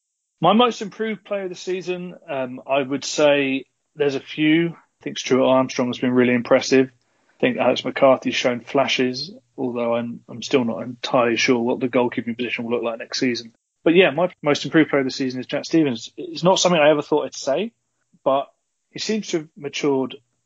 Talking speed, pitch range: 205 wpm, 120-145 Hz